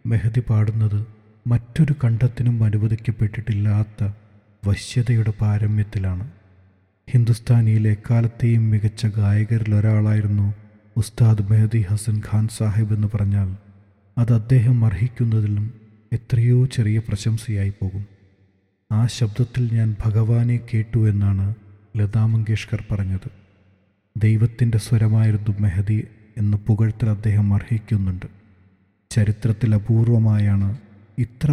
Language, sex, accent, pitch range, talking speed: Malayalam, male, native, 105-115 Hz, 80 wpm